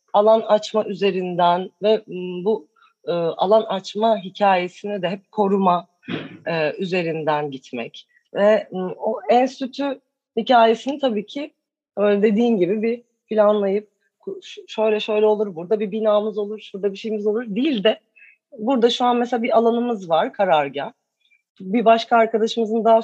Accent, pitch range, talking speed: native, 180-230 Hz, 130 wpm